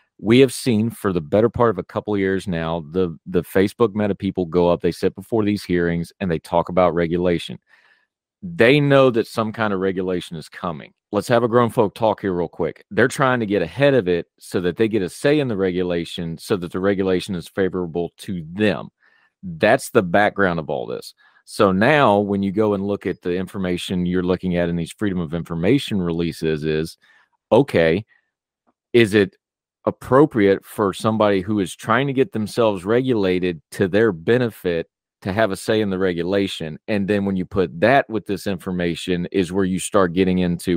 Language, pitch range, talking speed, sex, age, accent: English, 90-110 Hz, 200 wpm, male, 40-59, American